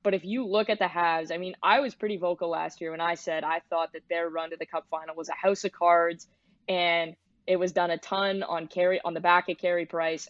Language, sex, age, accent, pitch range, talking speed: English, female, 20-39, American, 170-210 Hz, 270 wpm